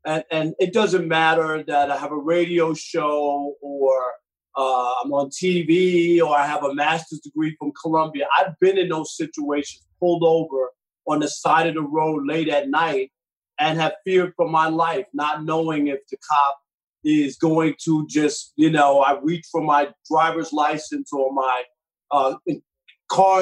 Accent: American